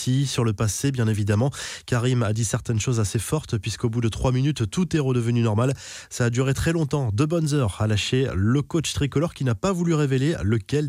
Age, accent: 20-39, French